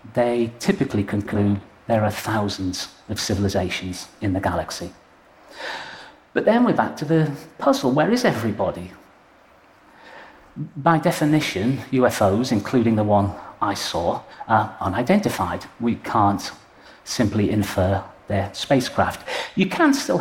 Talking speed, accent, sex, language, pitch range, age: 120 wpm, British, male, English, 100-125 Hz, 40-59